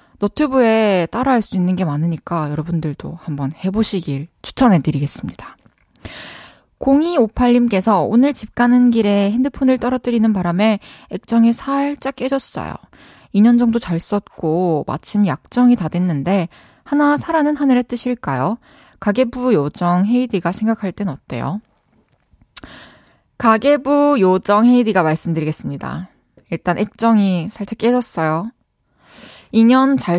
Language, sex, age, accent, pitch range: Korean, female, 20-39, native, 180-250 Hz